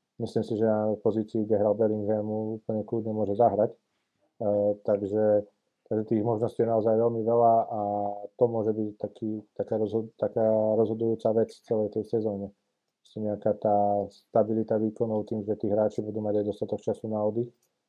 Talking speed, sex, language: 170 wpm, male, Slovak